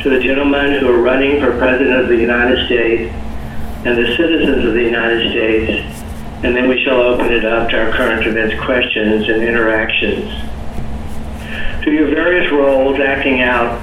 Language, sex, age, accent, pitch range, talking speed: English, male, 60-79, American, 105-130 Hz, 170 wpm